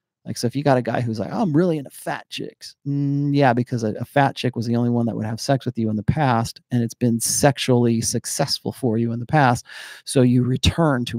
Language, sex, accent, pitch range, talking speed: English, male, American, 115-140 Hz, 265 wpm